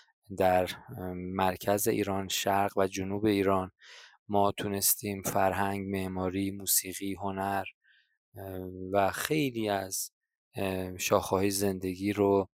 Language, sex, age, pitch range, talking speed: Persian, male, 20-39, 95-105 Hz, 90 wpm